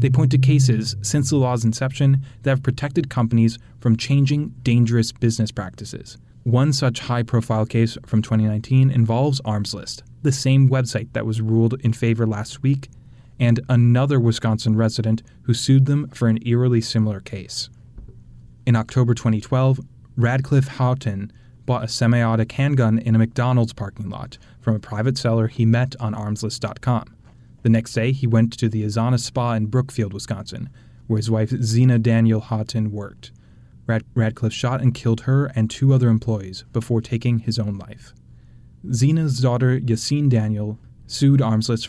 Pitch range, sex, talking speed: 110-125 Hz, male, 155 wpm